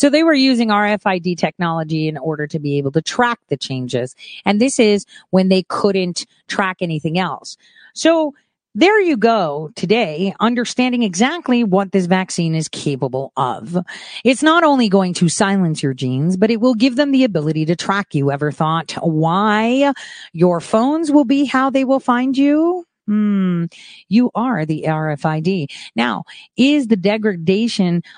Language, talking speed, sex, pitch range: English, 160 wpm, female, 165-240 Hz